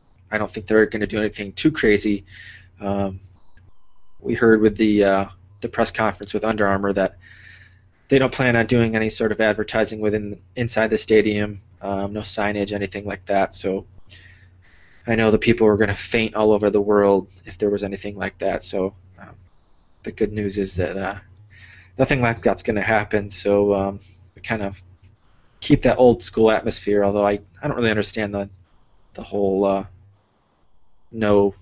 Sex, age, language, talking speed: male, 20-39, English, 180 wpm